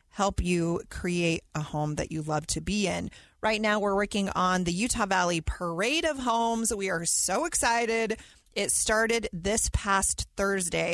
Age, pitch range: 30-49, 175-230 Hz